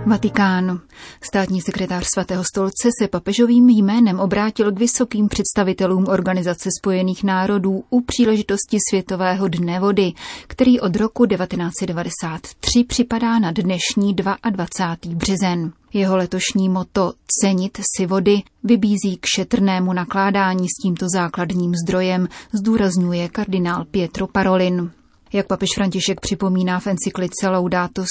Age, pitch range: 30-49, 185-205 Hz